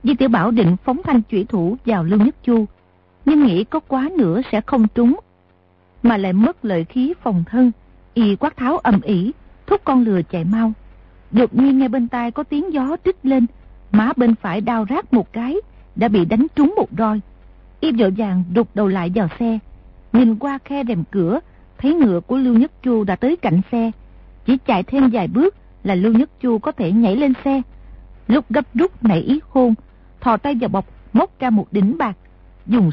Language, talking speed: Vietnamese, 205 wpm